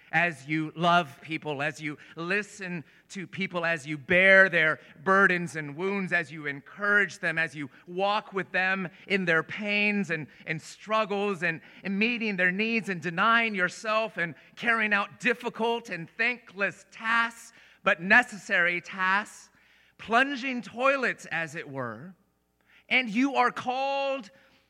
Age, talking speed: 30-49, 140 wpm